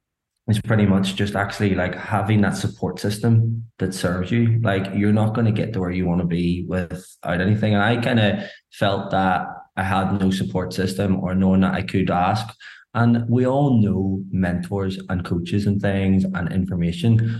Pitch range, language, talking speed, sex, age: 95-110 Hz, English, 180 wpm, male, 20-39